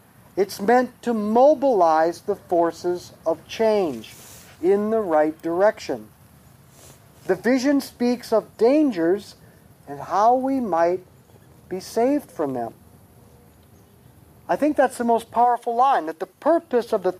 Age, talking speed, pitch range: 50-69, 130 wpm, 170-245 Hz